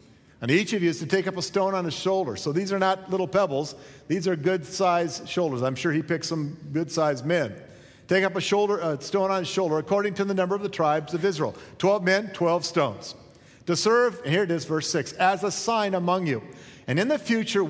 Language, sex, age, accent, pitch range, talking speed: English, male, 50-69, American, 115-170 Hz, 235 wpm